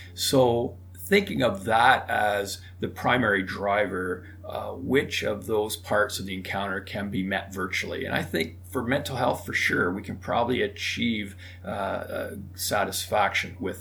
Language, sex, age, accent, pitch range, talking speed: English, male, 40-59, American, 95-110 Hz, 150 wpm